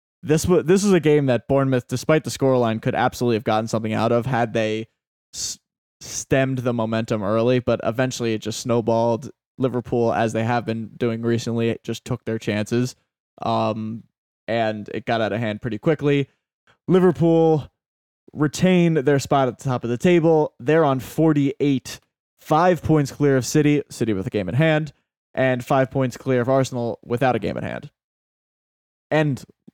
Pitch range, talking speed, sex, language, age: 115-140 Hz, 175 wpm, male, English, 20-39